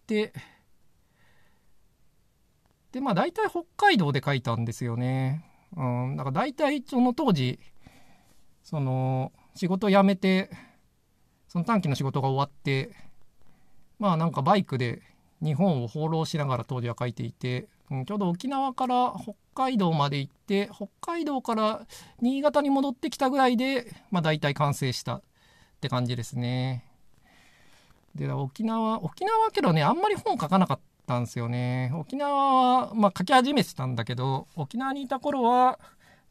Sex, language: male, Japanese